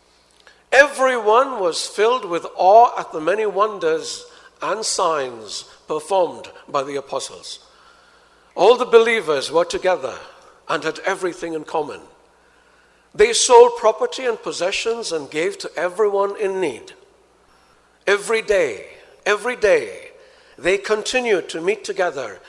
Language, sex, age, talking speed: English, male, 60-79, 120 wpm